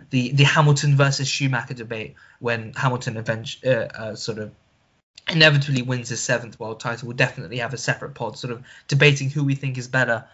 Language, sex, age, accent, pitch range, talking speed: English, male, 10-29, British, 125-160 Hz, 190 wpm